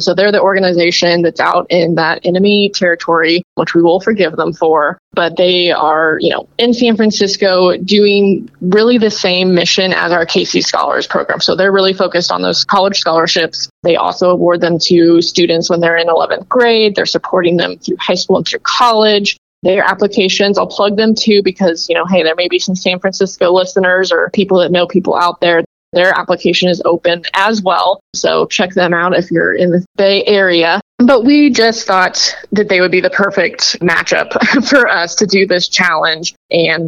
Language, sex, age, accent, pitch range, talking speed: English, female, 20-39, American, 175-205 Hz, 195 wpm